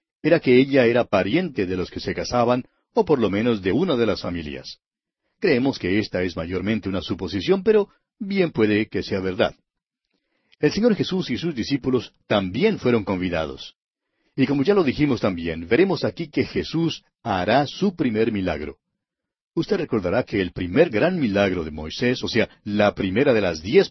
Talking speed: 180 wpm